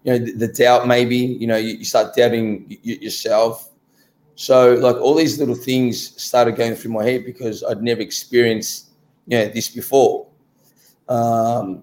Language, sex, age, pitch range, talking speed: English, male, 20-39, 115-130 Hz, 170 wpm